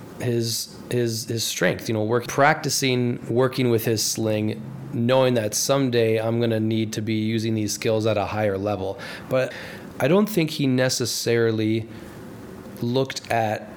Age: 20-39